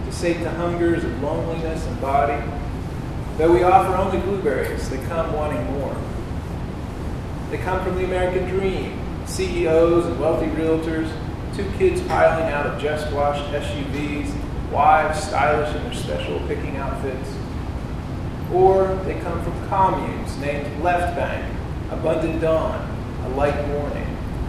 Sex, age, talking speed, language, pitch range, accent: male, 30-49, 130 wpm, English, 150-175 Hz, American